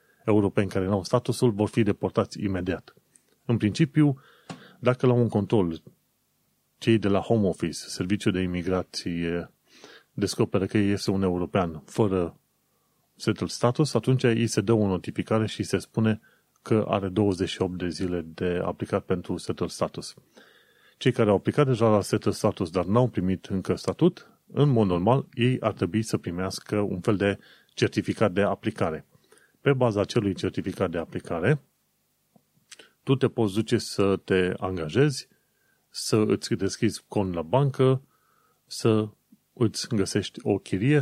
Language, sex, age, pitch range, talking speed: Romanian, male, 30-49, 95-120 Hz, 150 wpm